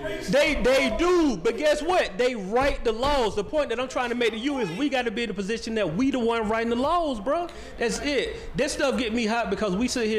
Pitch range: 140-205 Hz